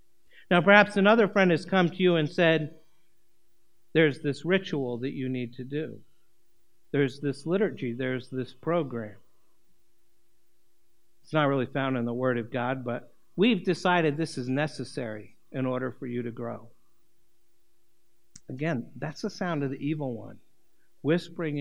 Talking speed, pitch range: 150 wpm, 120-175 Hz